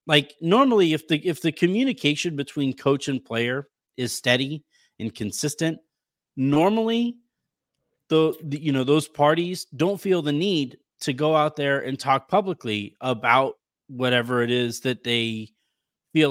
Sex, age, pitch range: male, 30-49, 125-155 Hz